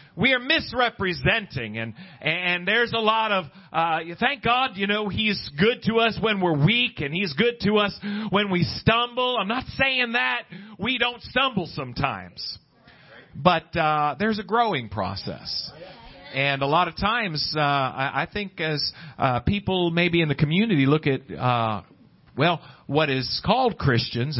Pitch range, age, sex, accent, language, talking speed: 135-200 Hz, 40-59, male, American, English, 160 wpm